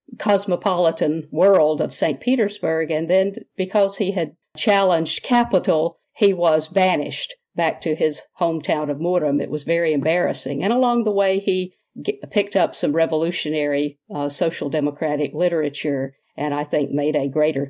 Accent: American